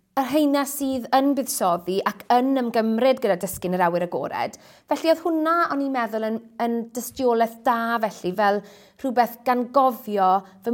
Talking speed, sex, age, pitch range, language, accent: 170 wpm, female, 30-49, 205-255 Hz, English, British